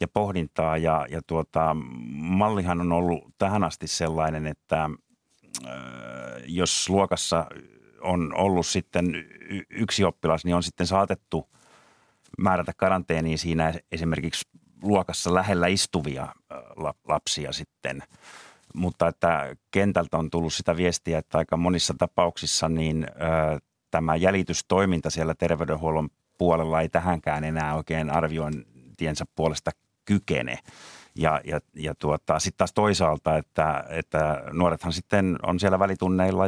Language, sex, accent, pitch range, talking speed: Finnish, male, native, 80-90 Hz, 110 wpm